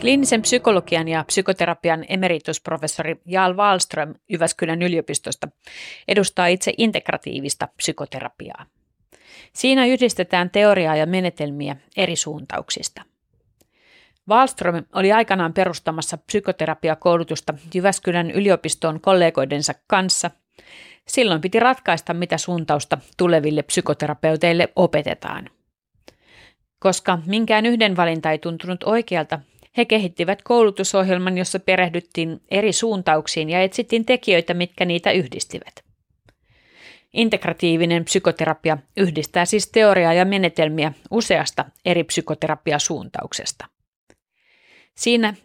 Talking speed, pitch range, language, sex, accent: 90 wpm, 160-195 Hz, Finnish, female, native